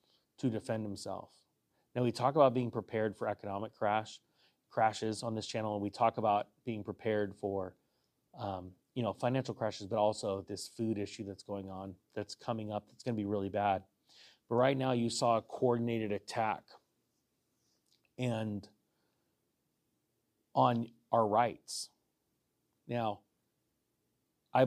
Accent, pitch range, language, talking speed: American, 105-120 Hz, English, 145 wpm